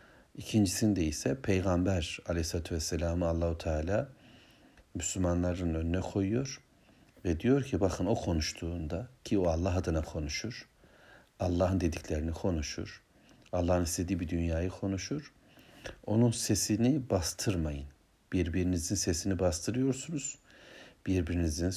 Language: Turkish